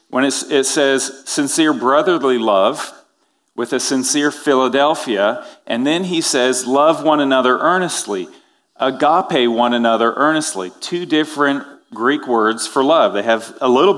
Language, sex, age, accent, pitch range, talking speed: English, male, 40-59, American, 120-150 Hz, 140 wpm